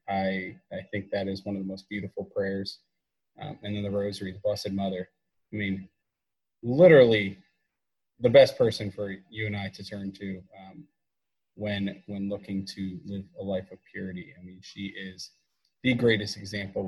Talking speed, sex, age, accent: 175 wpm, male, 20-39, American